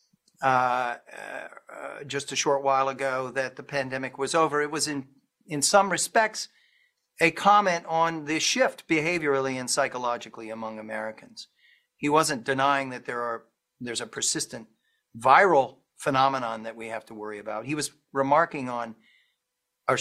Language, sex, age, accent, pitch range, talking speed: English, male, 50-69, American, 130-160 Hz, 150 wpm